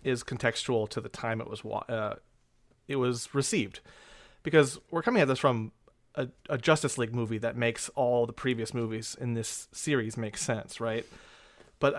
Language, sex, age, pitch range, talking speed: English, male, 30-49, 120-145 Hz, 175 wpm